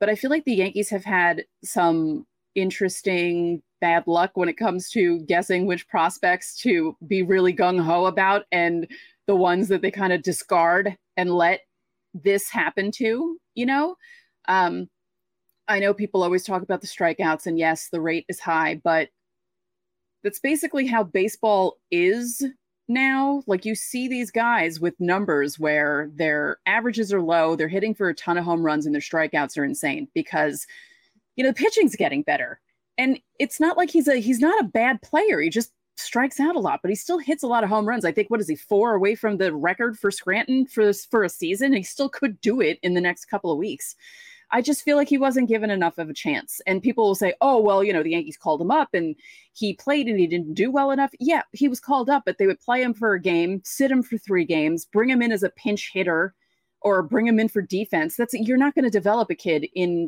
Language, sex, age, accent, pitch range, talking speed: English, female, 30-49, American, 175-265 Hz, 220 wpm